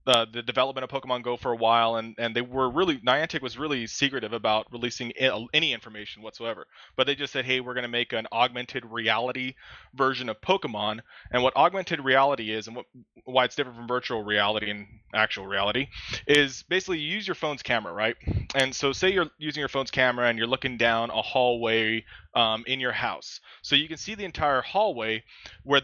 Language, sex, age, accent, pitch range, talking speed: English, male, 20-39, American, 115-140 Hz, 200 wpm